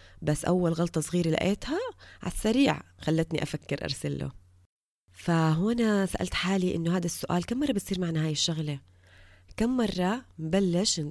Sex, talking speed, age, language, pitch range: female, 140 wpm, 20-39, Arabic, 145-195 Hz